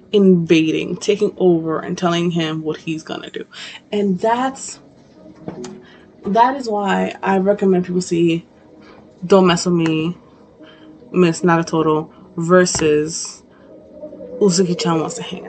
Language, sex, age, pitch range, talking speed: English, female, 20-39, 170-210 Hz, 120 wpm